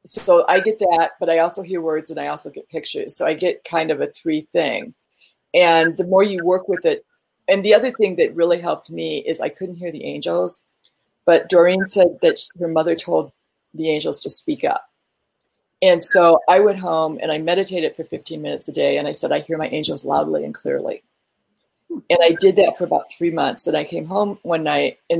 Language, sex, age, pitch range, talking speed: English, female, 40-59, 160-225 Hz, 220 wpm